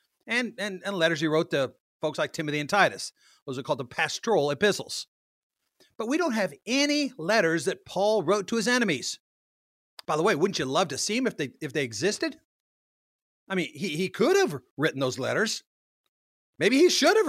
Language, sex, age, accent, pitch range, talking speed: English, male, 50-69, American, 165-225 Hz, 200 wpm